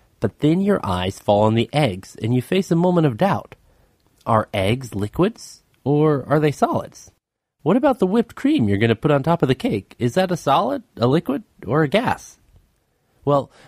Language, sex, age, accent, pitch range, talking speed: English, male, 30-49, American, 105-150 Hz, 200 wpm